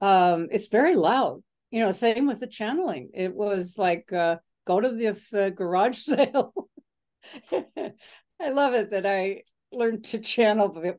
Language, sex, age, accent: English, female, 60-79, American